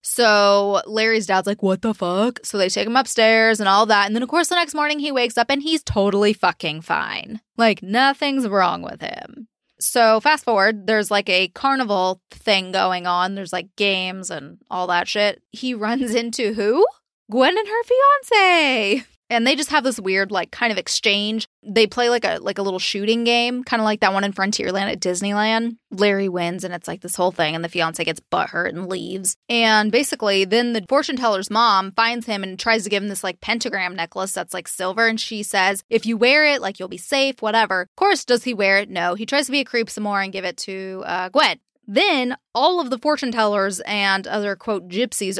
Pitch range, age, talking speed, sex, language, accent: 195-255 Hz, 20-39, 220 wpm, female, English, American